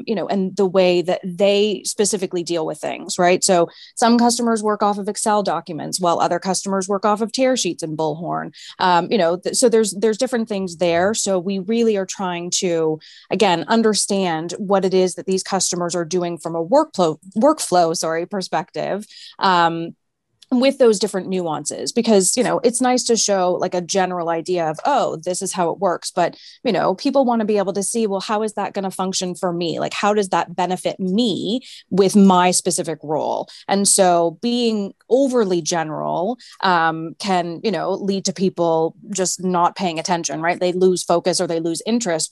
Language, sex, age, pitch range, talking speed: English, female, 20-39, 170-205 Hz, 195 wpm